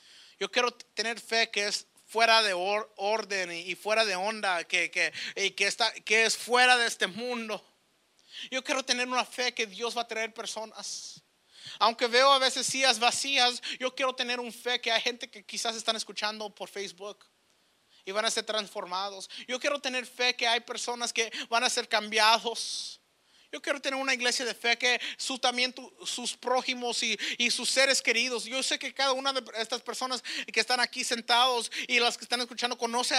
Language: English